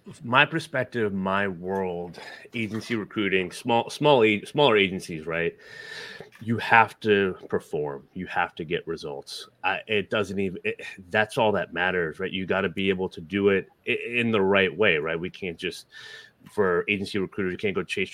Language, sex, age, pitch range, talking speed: English, male, 30-49, 95-115 Hz, 175 wpm